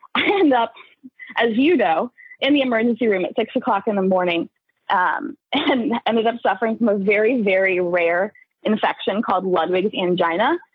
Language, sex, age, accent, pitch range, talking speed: English, female, 20-39, American, 215-300 Hz, 165 wpm